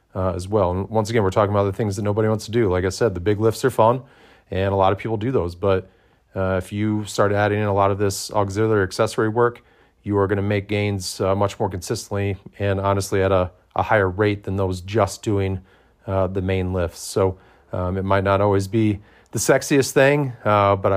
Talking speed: 235 wpm